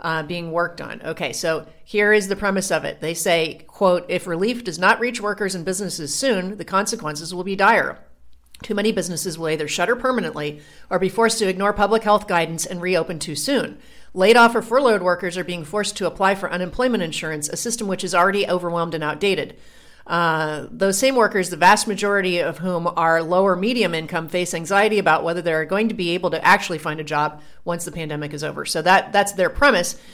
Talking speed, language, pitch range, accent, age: 210 wpm, English, 170-220 Hz, American, 40-59